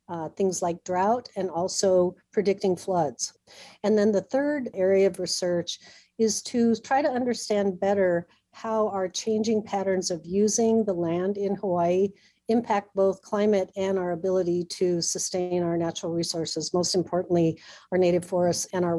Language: English